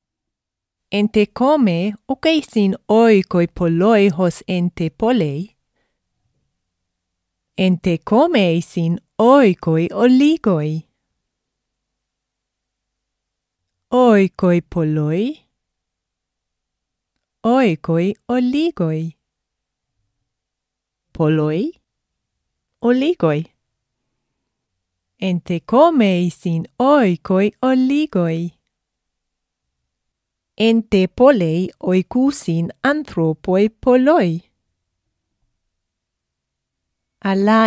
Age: 30-49